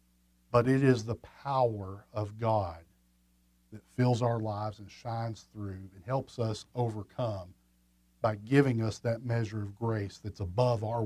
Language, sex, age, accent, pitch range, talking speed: English, male, 40-59, American, 80-130 Hz, 150 wpm